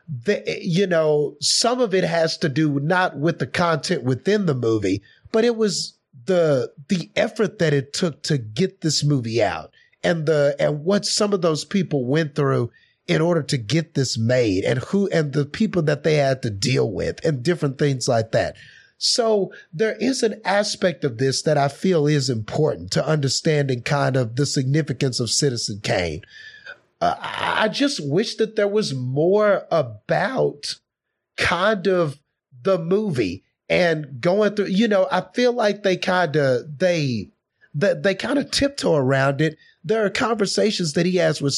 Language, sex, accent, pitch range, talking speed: English, male, American, 140-195 Hz, 170 wpm